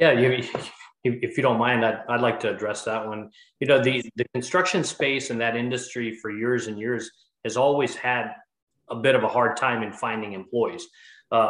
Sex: male